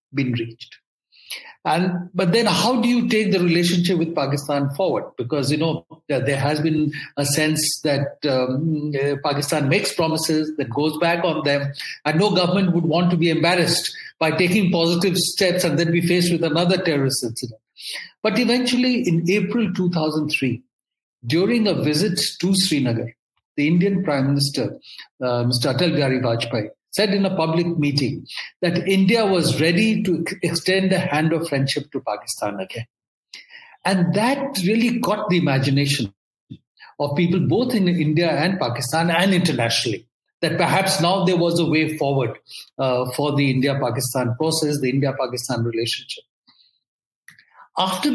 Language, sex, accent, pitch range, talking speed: English, male, Indian, 140-180 Hz, 150 wpm